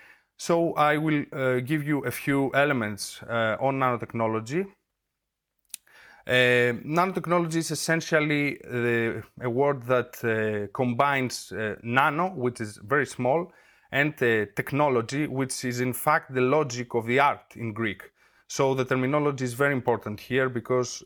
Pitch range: 120-145 Hz